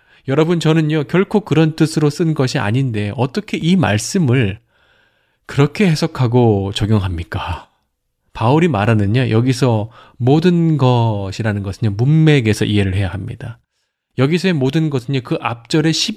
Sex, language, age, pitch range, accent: male, Korean, 20-39, 115-165 Hz, native